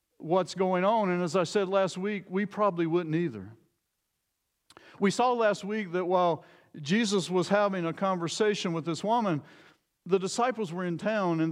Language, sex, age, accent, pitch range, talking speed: English, male, 50-69, American, 170-215 Hz, 170 wpm